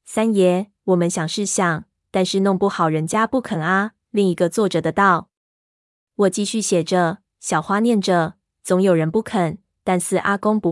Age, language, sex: 20-39, Chinese, female